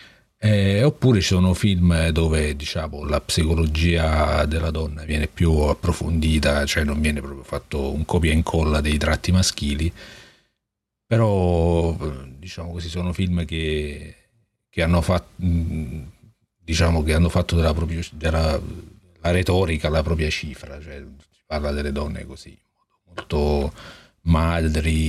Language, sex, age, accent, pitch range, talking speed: Italian, male, 40-59, native, 75-90 Hz, 130 wpm